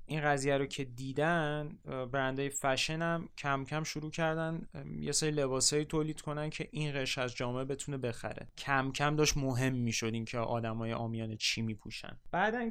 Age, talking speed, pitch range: 30-49, 185 wpm, 125-160 Hz